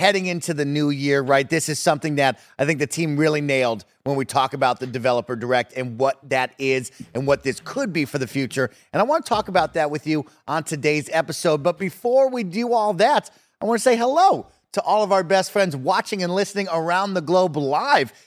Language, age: English, 30-49